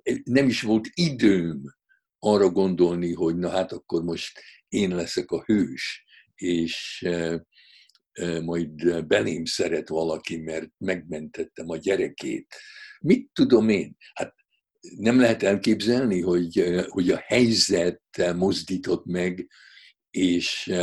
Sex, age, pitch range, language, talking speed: male, 60-79, 85-115 Hz, Hungarian, 105 wpm